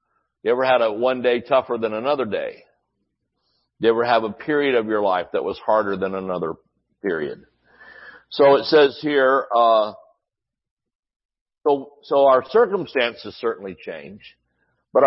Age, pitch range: 60-79, 110-145 Hz